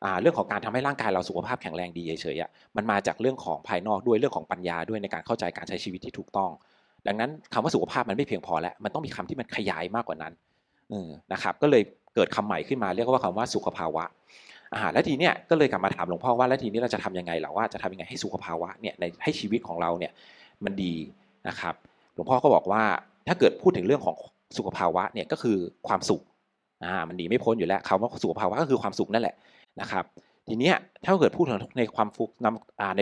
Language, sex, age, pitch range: Thai, male, 30-49, 90-115 Hz